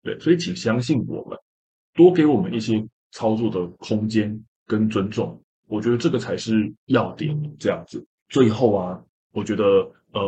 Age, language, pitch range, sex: 20-39, Chinese, 105-135 Hz, male